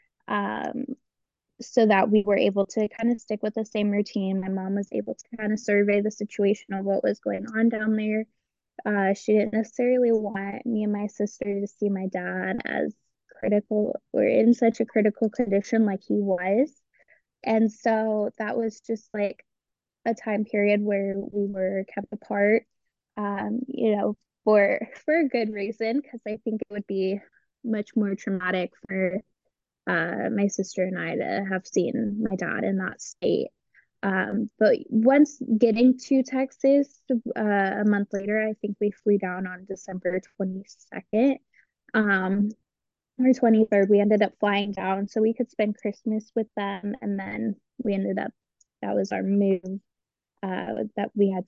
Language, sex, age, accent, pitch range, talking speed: English, female, 10-29, American, 200-230 Hz, 170 wpm